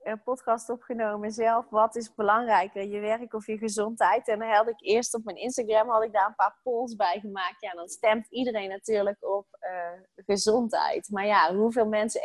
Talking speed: 195 wpm